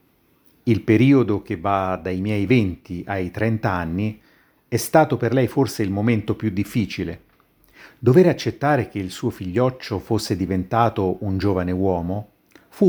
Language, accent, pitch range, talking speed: Italian, native, 95-125 Hz, 145 wpm